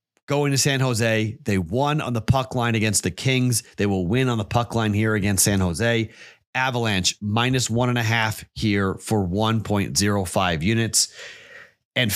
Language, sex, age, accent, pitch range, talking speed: English, male, 30-49, American, 105-155 Hz, 175 wpm